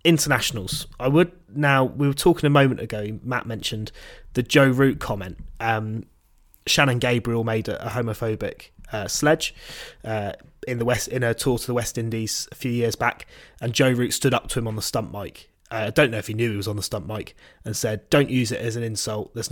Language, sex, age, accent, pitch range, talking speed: English, male, 20-39, British, 110-130 Hz, 215 wpm